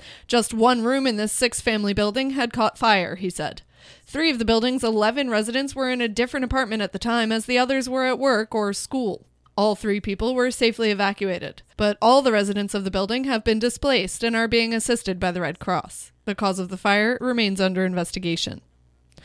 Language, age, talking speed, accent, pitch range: English, 20-39, 205 wpm, American, 210-250 Hz